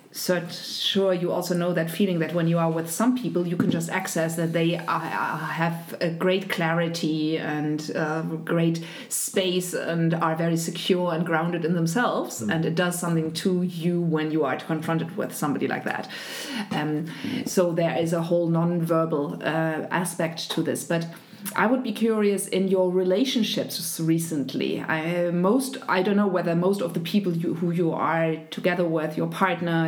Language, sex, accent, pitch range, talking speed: German, female, German, 165-195 Hz, 180 wpm